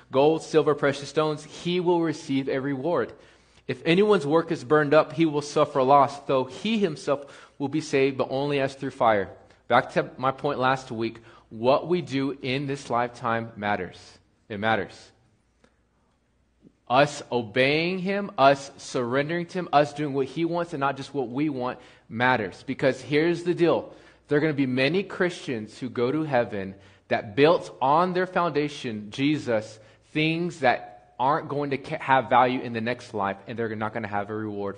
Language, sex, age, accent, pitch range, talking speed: English, male, 20-39, American, 115-150 Hz, 180 wpm